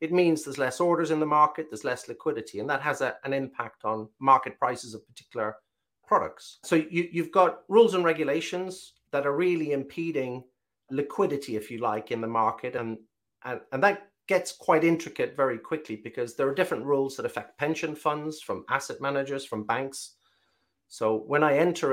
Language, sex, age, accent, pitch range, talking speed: English, male, 40-59, British, 120-155 Hz, 180 wpm